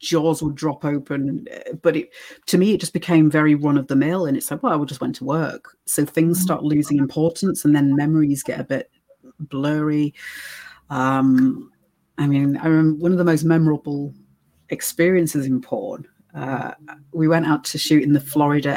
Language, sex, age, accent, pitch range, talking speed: English, female, 40-59, British, 140-170 Hz, 180 wpm